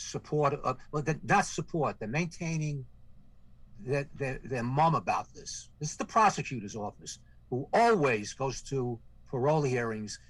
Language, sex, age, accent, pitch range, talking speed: English, male, 60-79, American, 115-155 Hz, 145 wpm